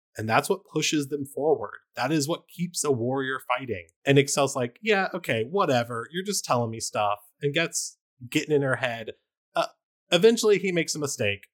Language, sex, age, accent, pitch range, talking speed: English, male, 20-39, American, 110-170 Hz, 185 wpm